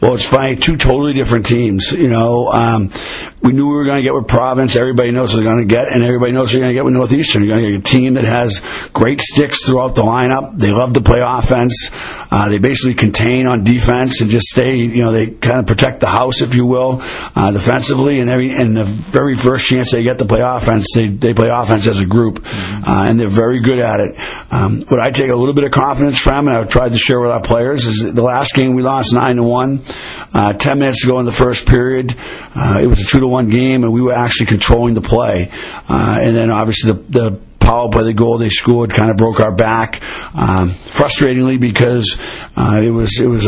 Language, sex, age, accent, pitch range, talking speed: English, male, 50-69, American, 115-130 Hz, 240 wpm